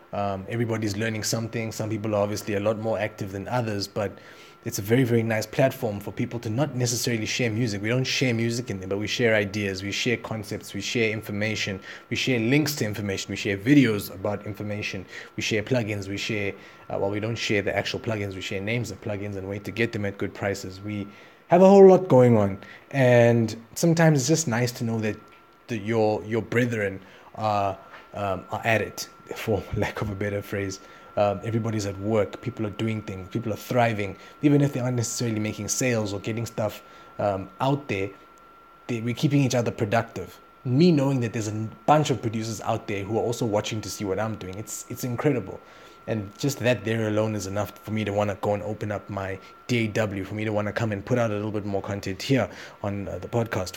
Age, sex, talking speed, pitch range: 20-39, male, 220 wpm, 100-120 Hz